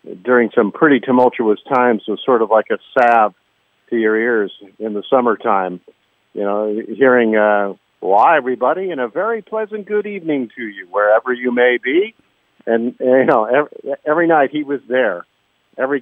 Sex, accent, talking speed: male, American, 175 wpm